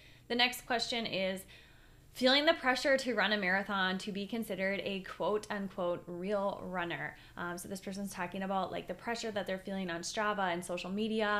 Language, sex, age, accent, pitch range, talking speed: English, female, 20-39, American, 180-210 Hz, 190 wpm